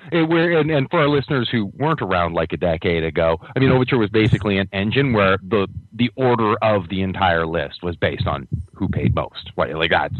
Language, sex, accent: English, male, American